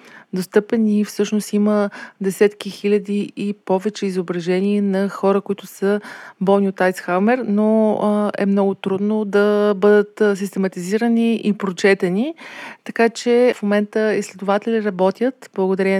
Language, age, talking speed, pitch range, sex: Bulgarian, 30-49, 115 wpm, 190-215 Hz, female